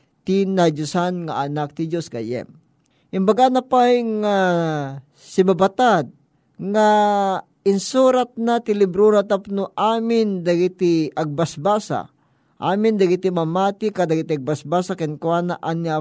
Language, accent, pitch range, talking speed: Filipino, native, 155-200 Hz, 115 wpm